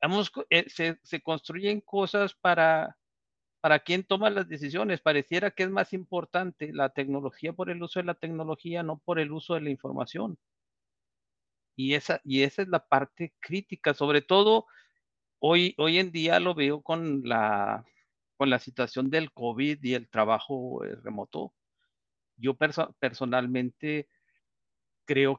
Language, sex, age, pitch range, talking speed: Spanish, male, 50-69, 125-165 Hz, 145 wpm